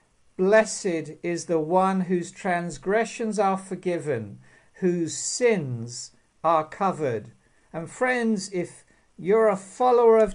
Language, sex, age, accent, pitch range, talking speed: English, male, 50-69, British, 155-215 Hz, 110 wpm